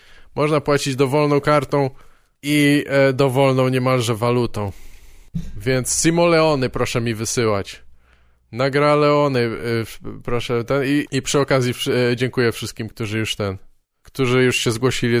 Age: 20-39